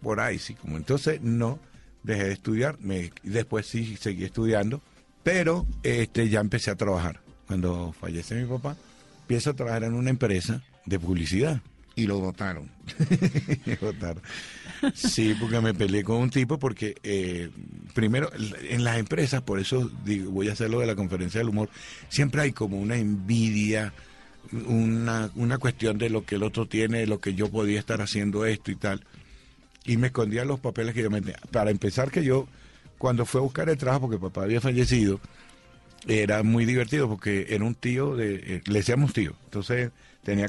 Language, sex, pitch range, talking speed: Spanish, male, 100-125 Hz, 180 wpm